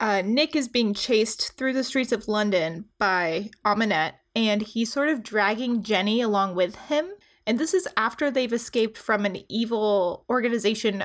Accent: American